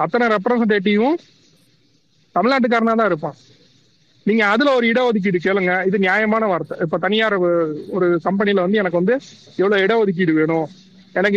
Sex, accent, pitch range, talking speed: male, native, 180-225 Hz, 125 wpm